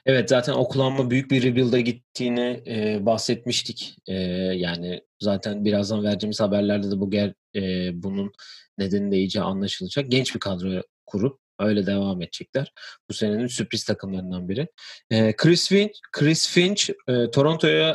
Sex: male